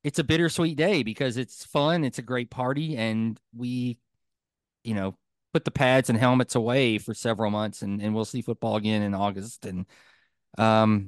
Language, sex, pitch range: English, male, 105-130 Hz